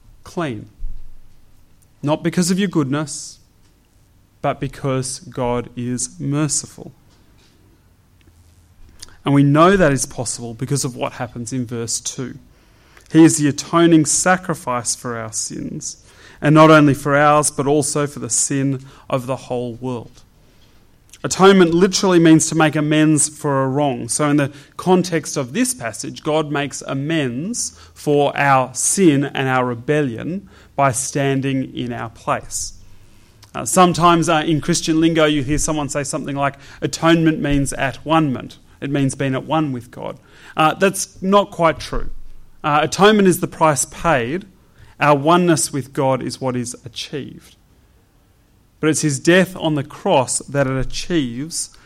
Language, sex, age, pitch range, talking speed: English, male, 30-49, 125-160 Hz, 150 wpm